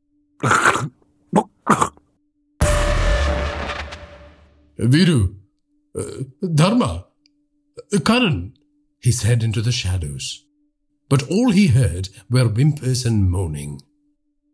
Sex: male